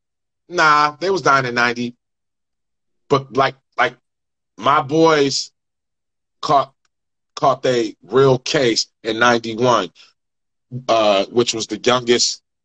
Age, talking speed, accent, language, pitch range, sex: 30-49, 110 wpm, American, English, 110-135 Hz, male